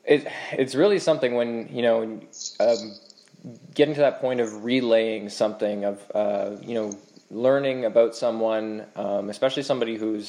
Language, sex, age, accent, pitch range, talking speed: English, male, 20-39, American, 105-115 Hz, 145 wpm